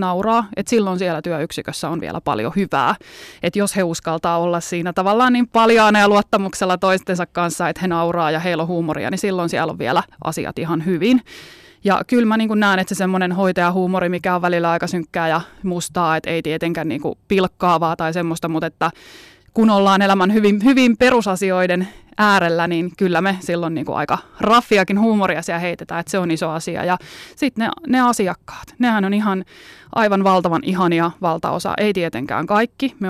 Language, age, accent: Finnish, 20-39, native